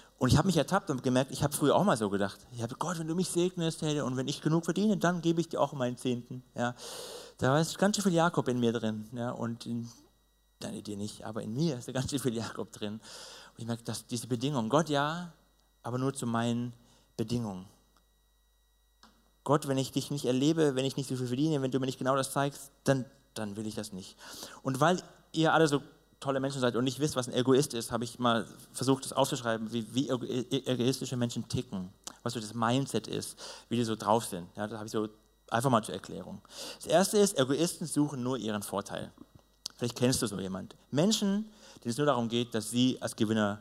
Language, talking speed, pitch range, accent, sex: German, 225 wpm, 110-145 Hz, German, male